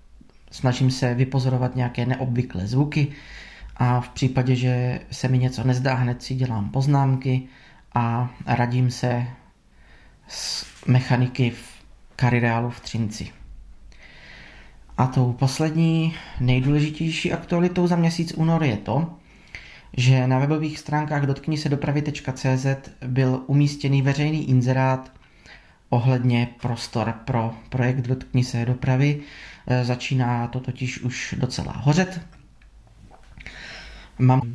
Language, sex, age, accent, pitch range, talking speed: Czech, male, 20-39, native, 125-145 Hz, 105 wpm